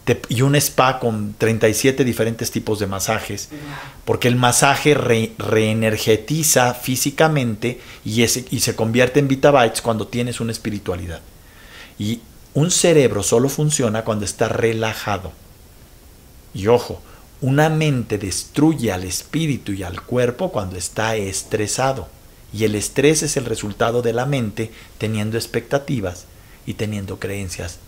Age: 50-69